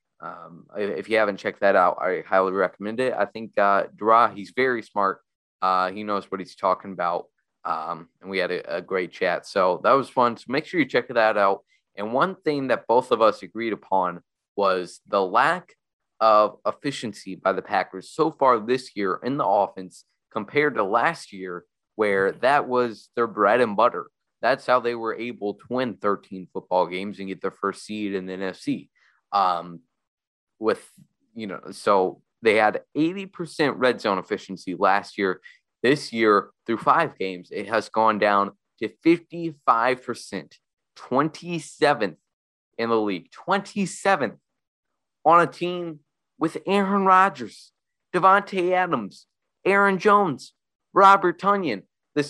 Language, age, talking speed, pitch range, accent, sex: English, 20-39, 160 wpm, 105-170 Hz, American, male